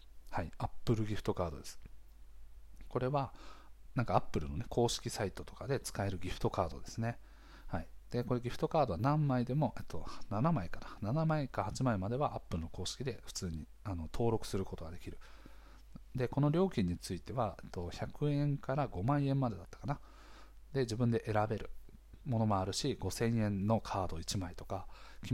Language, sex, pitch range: Japanese, male, 90-130 Hz